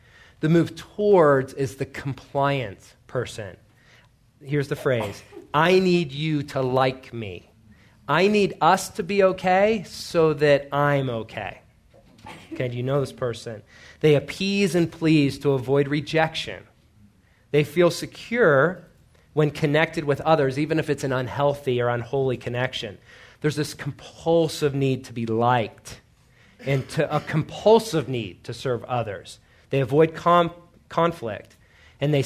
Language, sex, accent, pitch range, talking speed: English, male, American, 120-155 Hz, 135 wpm